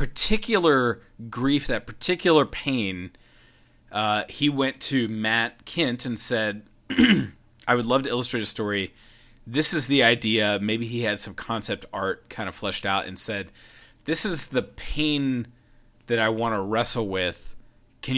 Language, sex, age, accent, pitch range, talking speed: English, male, 30-49, American, 105-130 Hz, 155 wpm